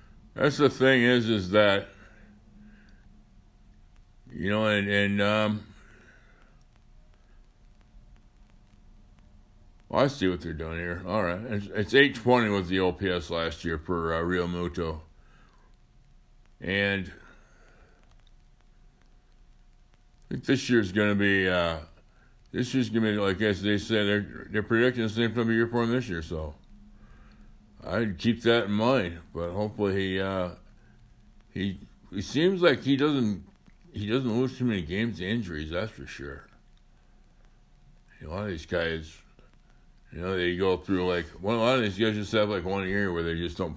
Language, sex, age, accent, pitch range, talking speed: English, male, 60-79, American, 85-110 Hz, 150 wpm